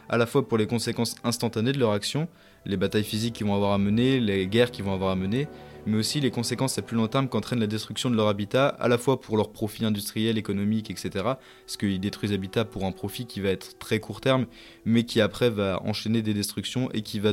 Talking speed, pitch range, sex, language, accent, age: 245 wpm, 105-120 Hz, male, French, French, 20-39